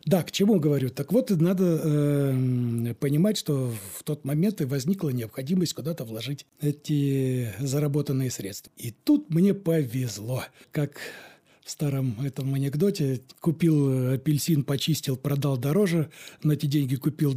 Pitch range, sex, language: 135-165 Hz, male, Russian